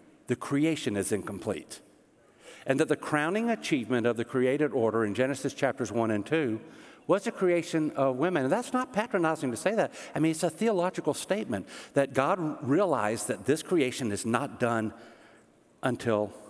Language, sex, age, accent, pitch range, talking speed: English, male, 60-79, American, 115-160 Hz, 170 wpm